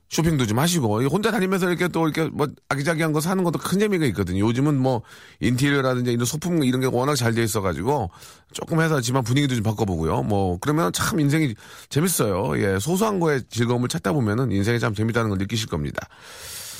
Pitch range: 110-160 Hz